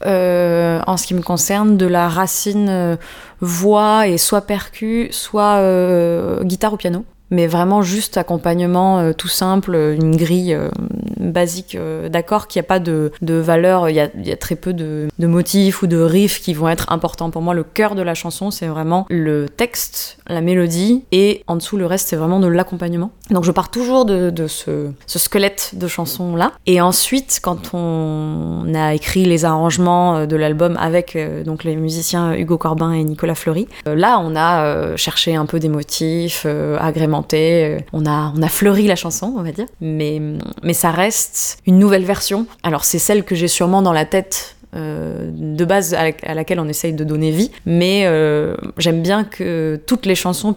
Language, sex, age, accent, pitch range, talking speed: French, female, 20-39, French, 160-195 Hz, 200 wpm